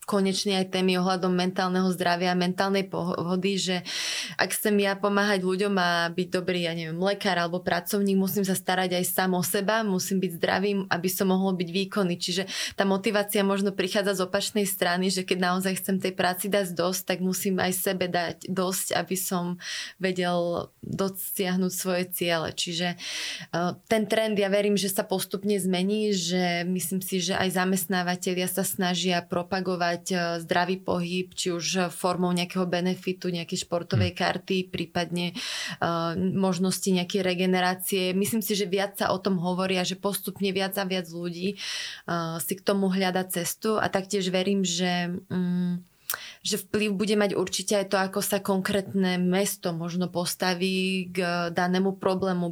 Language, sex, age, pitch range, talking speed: Slovak, female, 20-39, 180-195 Hz, 160 wpm